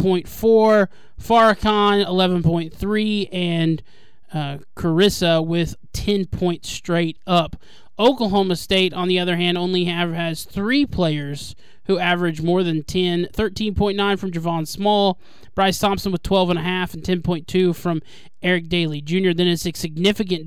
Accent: American